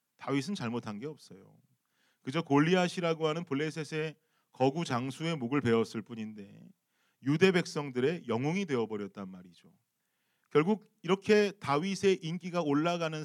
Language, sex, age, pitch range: Korean, male, 40-59, 125-185 Hz